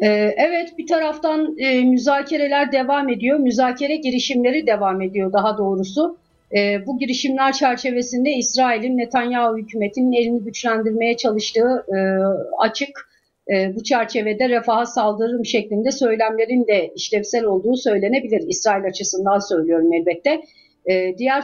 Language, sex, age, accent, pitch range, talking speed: Turkish, female, 50-69, native, 205-255 Hz, 105 wpm